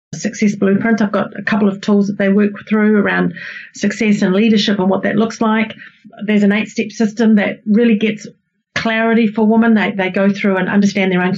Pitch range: 195-225 Hz